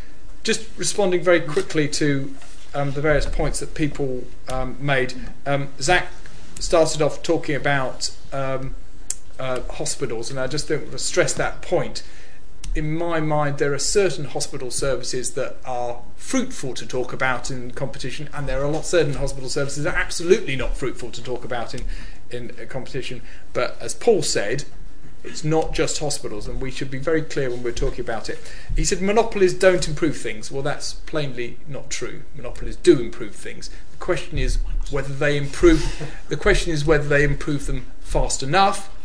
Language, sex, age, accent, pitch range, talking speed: English, male, 40-59, British, 130-160 Hz, 175 wpm